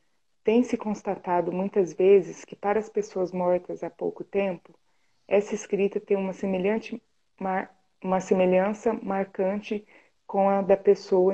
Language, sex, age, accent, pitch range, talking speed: Portuguese, female, 20-39, Brazilian, 185-210 Hz, 130 wpm